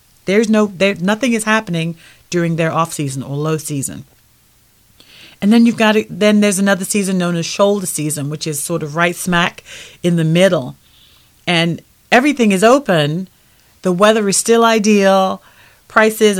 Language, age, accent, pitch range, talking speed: English, 40-59, American, 155-205 Hz, 165 wpm